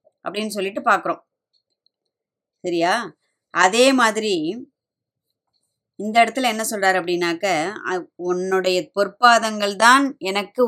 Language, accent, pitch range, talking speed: Tamil, native, 190-240 Hz, 85 wpm